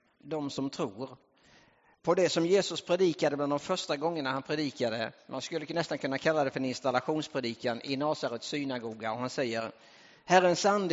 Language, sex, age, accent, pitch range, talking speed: English, male, 50-69, Norwegian, 130-170 Hz, 170 wpm